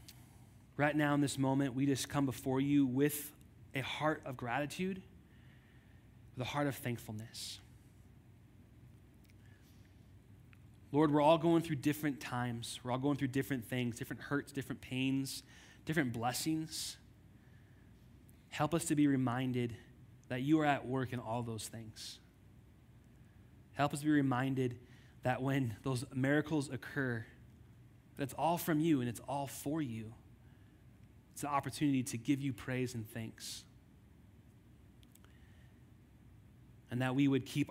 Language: English